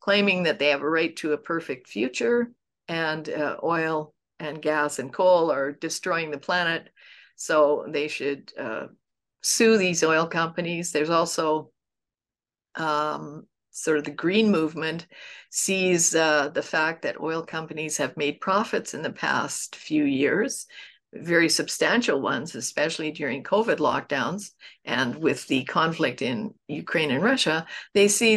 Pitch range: 155-185 Hz